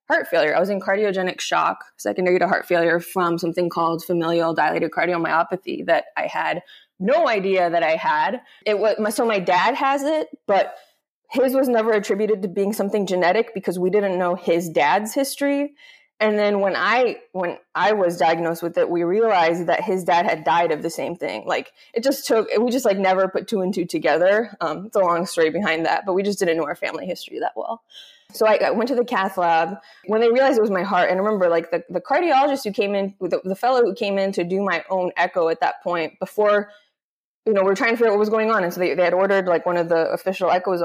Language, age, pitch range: English, 20-39, 175-220 Hz